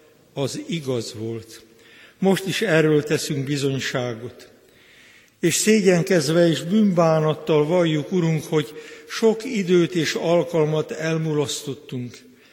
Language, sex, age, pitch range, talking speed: Hungarian, male, 60-79, 140-170 Hz, 95 wpm